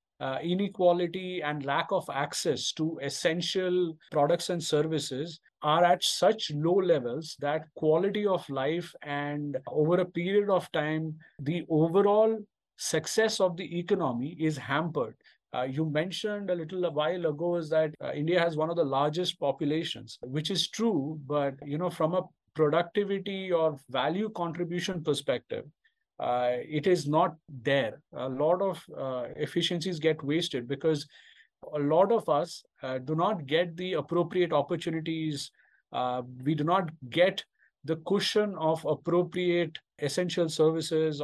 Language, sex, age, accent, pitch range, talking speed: English, male, 50-69, Indian, 145-180 Hz, 145 wpm